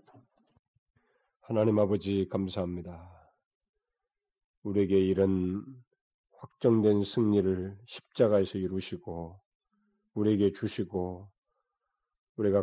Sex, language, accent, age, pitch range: male, Korean, native, 40-59, 95-115 Hz